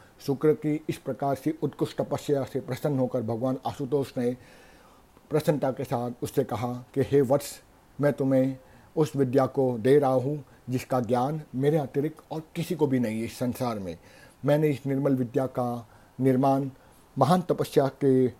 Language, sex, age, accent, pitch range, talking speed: Hindi, male, 50-69, native, 125-150 Hz, 165 wpm